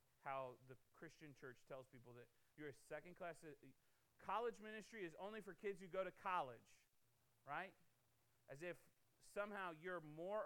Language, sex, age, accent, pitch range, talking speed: English, male, 30-49, American, 120-175 Hz, 155 wpm